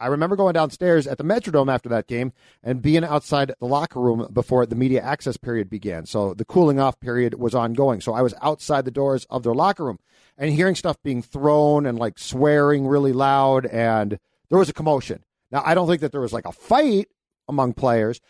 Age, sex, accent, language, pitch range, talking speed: 40-59, male, American, English, 120-155 Hz, 215 wpm